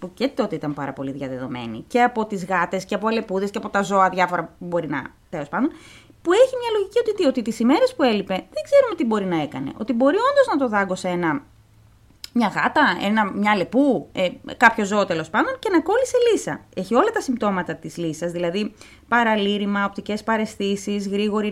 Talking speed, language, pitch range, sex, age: 200 wpm, Greek, 185-300 Hz, female, 20-39